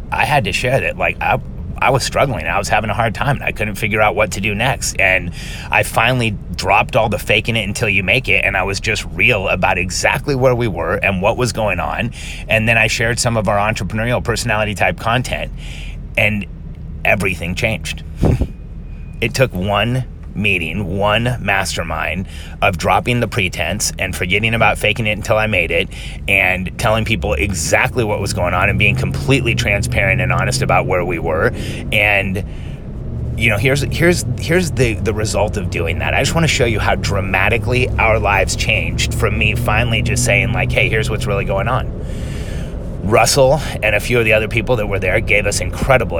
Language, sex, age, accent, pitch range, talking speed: English, male, 30-49, American, 90-115 Hz, 195 wpm